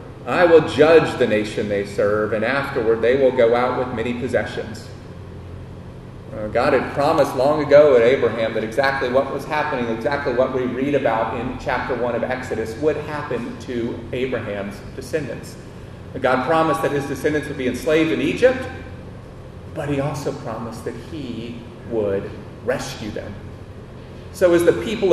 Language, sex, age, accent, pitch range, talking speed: English, male, 40-59, American, 110-145 Hz, 160 wpm